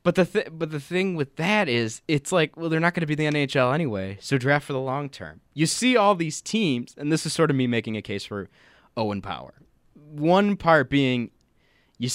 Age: 20-39